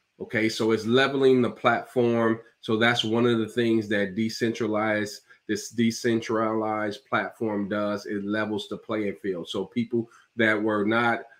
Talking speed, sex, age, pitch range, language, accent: 145 wpm, male, 30-49, 105-115 Hz, English, American